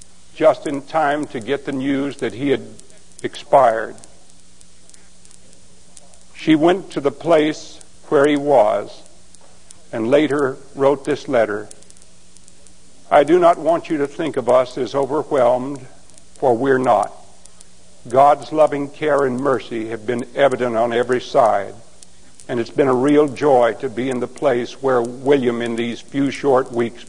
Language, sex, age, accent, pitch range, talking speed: English, male, 60-79, American, 120-150 Hz, 150 wpm